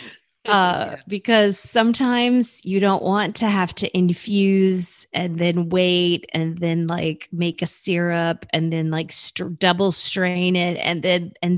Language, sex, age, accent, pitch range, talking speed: English, female, 30-49, American, 160-195 Hz, 150 wpm